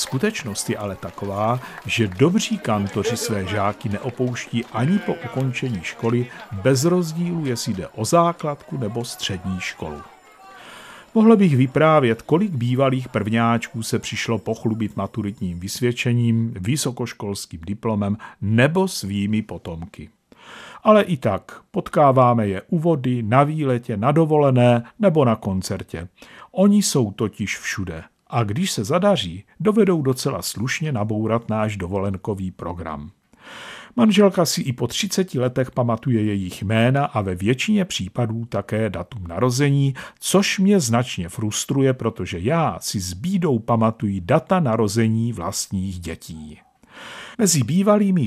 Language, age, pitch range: Czech, 50-69, 105-145 Hz